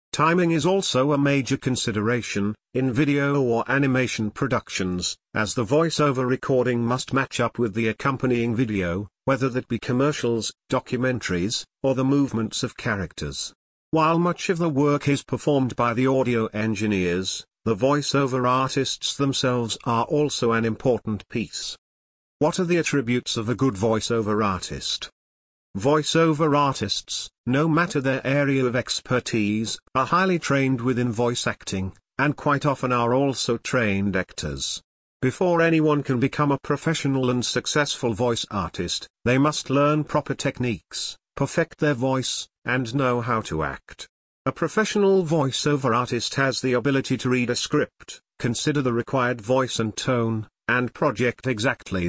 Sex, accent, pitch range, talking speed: male, British, 115-140 Hz, 145 wpm